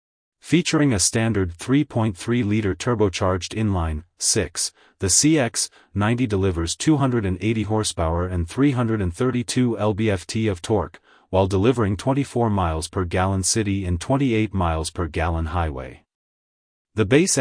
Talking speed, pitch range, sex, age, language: 110 wpm, 90-120 Hz, male, 30-49, English